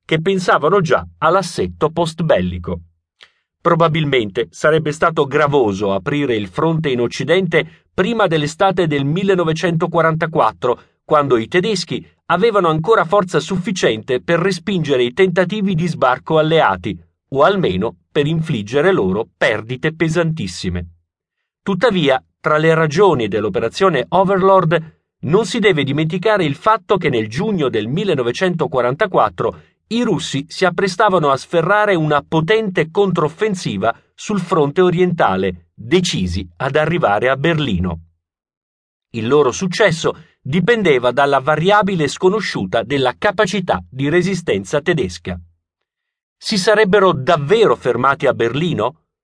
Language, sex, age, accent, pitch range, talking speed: Italian, male, 40-59, native, 140-190 Hz, 110 wpm